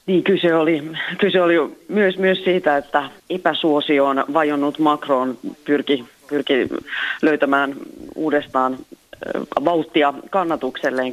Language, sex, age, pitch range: Finnish, female, 30-49, 130-150 Hz